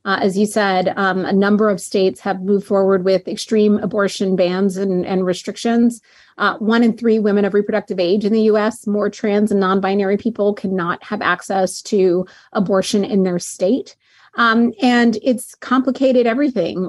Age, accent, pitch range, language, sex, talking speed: 30-49, American, 185-215 Hz, English, female, 170 wpm